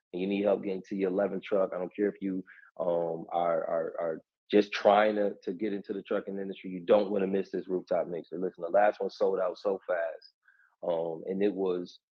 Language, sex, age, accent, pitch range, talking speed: English, male, 30-49, American, 95-105 Hz, 235 wpm